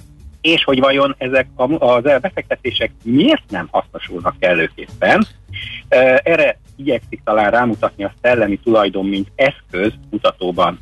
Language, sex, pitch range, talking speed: Hungarian, male, 95-135 Hz, 120 wpm